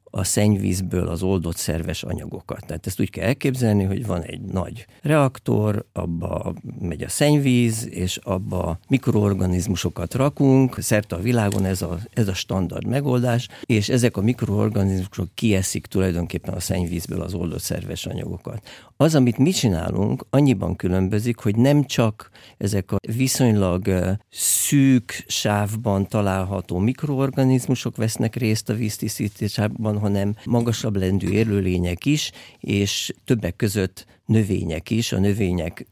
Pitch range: 95-120 Hz